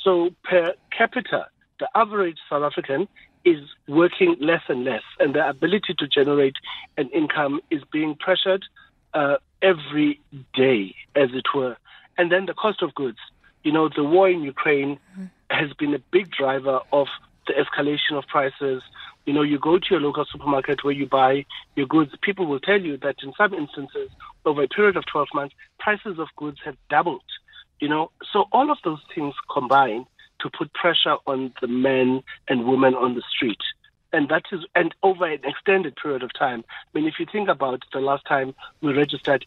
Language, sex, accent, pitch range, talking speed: English, male, South African, 140-190 Hz, 185 wpm